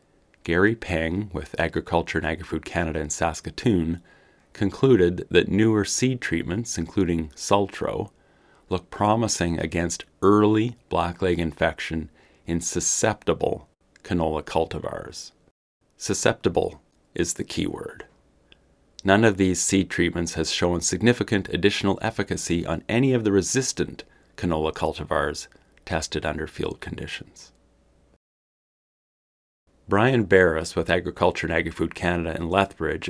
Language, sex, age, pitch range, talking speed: English, male, 40-59, 80-100 Hz, 110 wpm